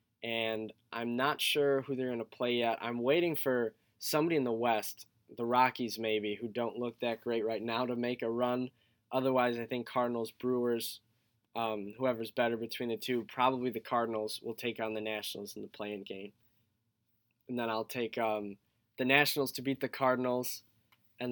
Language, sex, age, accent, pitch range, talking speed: English, male, 10-29, American, 110-125 Hz, 185 wpm